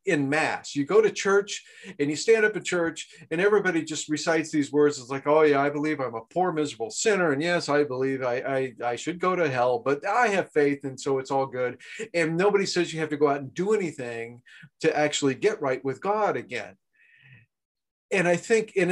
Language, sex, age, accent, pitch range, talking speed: English, male, 40-59, American, 140-200 Hz, 225 wpm